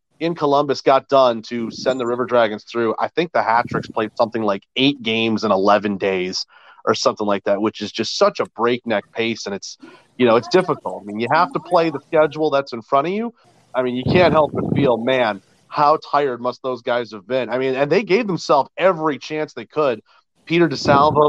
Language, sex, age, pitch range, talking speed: English, male, 30-49, 115-145 Hz, 225 wpm